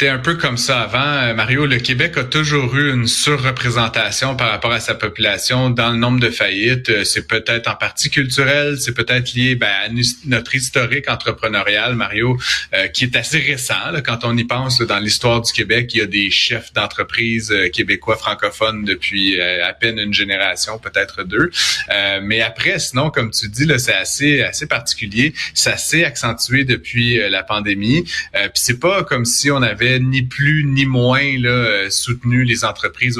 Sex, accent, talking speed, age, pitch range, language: male, Canadian, 195 wpm, 30-49, 110-130 Hz, French